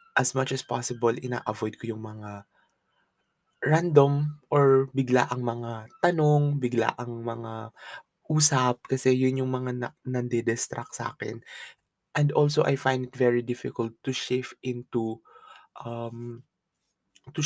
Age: 20-39